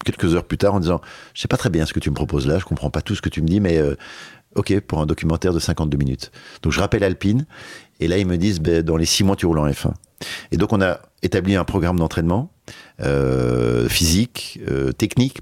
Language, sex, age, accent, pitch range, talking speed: French, male, 50-69, French, 75-100 Hz, 255 wpm